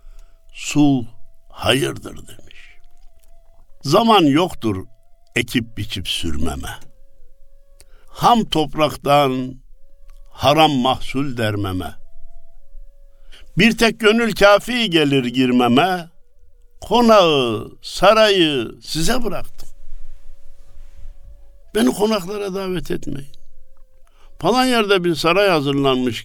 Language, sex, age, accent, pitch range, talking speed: Turkish, male, 60-79, native, 100-165 Hz, 75 wpm